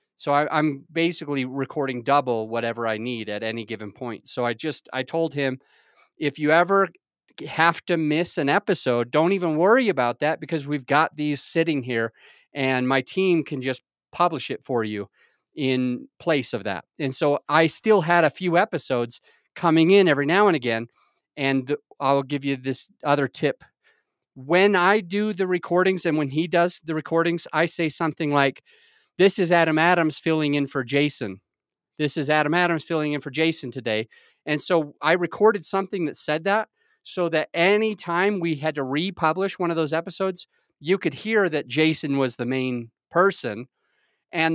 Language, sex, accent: English, male, American